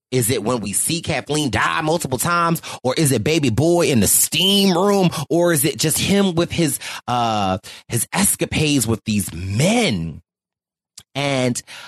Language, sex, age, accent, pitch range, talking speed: English, male, 30-49, American, 110-155 Hz, 160 wpm